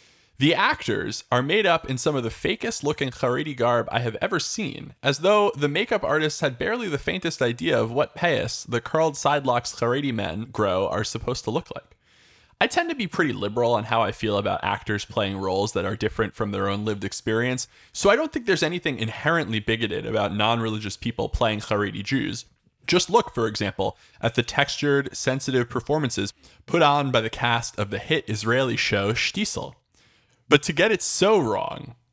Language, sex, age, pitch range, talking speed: English, male, 20-39, 105-135 Hz, 190 wpm